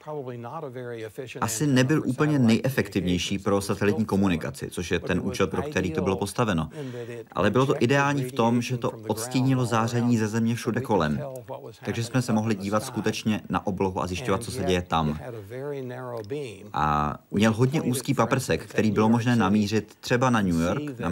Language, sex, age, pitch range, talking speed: Czech, male, 30-49, 95-125 Hz, 165 wpm